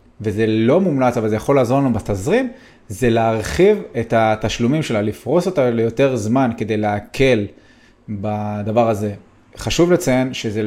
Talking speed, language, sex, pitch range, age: 140 wpm, Hebrew, male, 115-145 Hz, 30-49